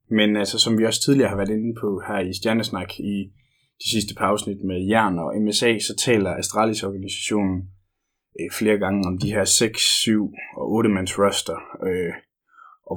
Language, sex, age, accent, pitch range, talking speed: Danish, male, 20-39, native, 95-110 Hz, 175 wpm